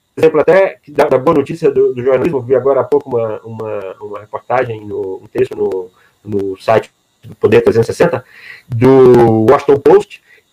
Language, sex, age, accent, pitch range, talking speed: Portuguese, male, 40-59, Brazilian, 145-240 Hz, 170 wpm